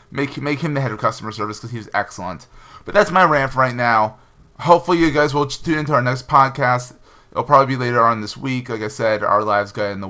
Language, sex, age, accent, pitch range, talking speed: English, male, 20-39, American, 115-145 Hz, 250 wpm